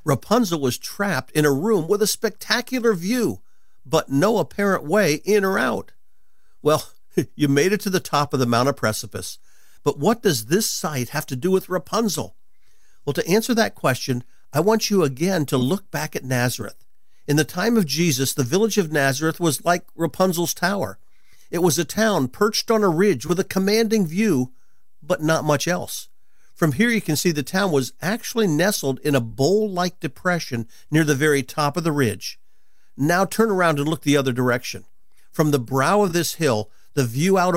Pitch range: 140-195 Hz